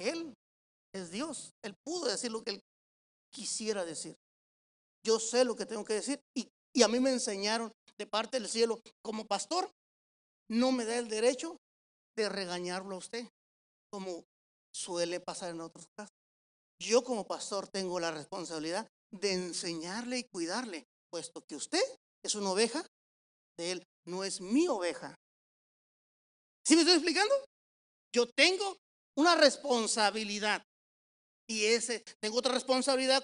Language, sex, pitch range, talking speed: Spanish, male, 195-255 Hz, 145 wpm